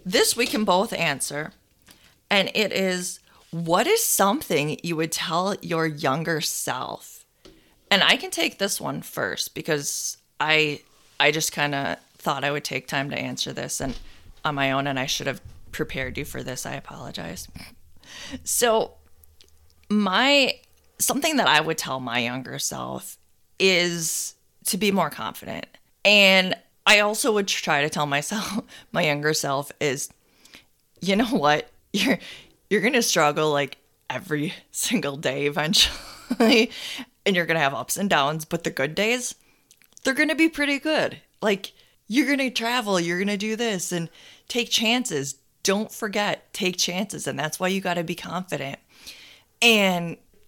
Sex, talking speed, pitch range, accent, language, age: female, 160 wpm, 150-220 Hz, American, English, 20-39